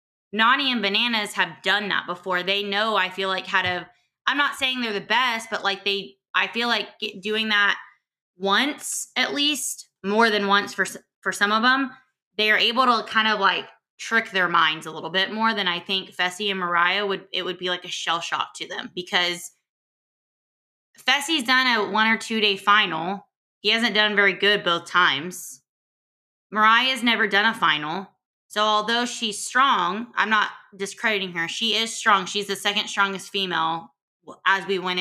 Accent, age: American, 20-39